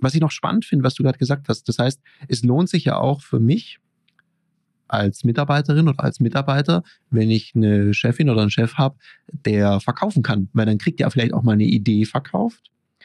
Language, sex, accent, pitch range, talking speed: German, male, German, 115-150 Hz, 205 wpm